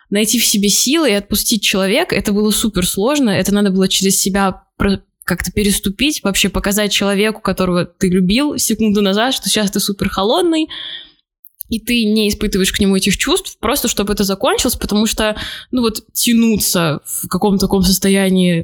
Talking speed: 165 wpm